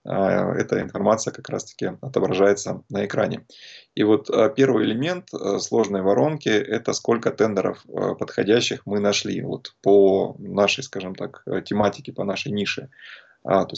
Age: 20-39